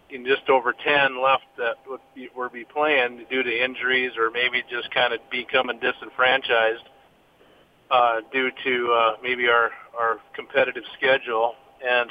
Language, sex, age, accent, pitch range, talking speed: English, male, 40-59, American, 130-155 Hz, 150 wpm